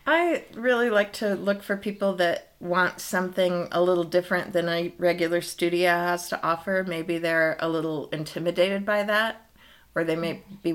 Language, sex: English, female